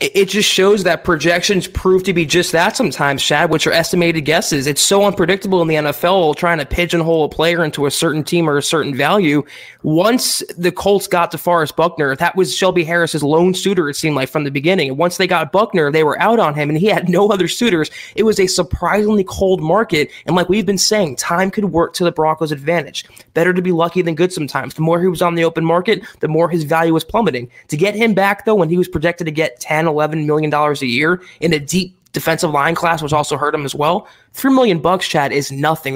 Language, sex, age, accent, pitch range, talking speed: English, male, 20-39, American, 155-190 Hz, 235 wpm